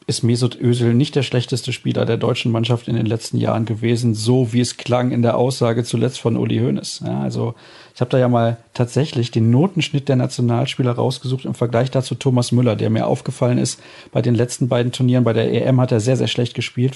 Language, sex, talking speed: German, male, 220 wpm